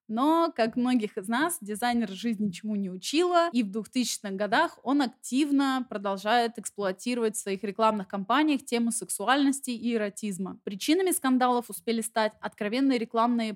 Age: 20-39